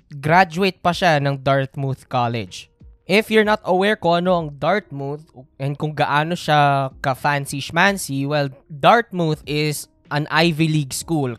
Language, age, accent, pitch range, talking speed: Filipino, 20-39, native, 130-160 Hz, 150 wpm